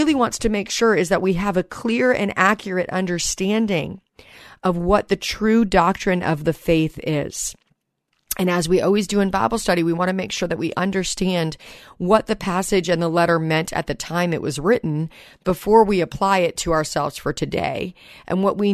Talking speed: 200 wpm